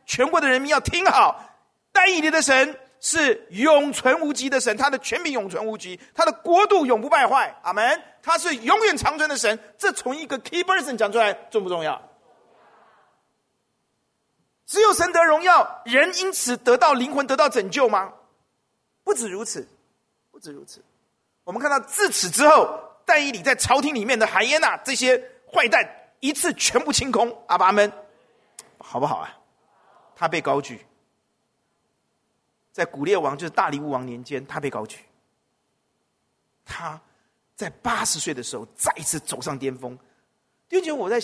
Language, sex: Chinese, male